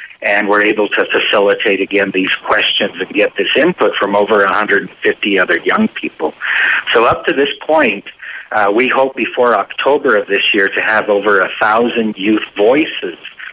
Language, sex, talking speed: English, male, 170 wpm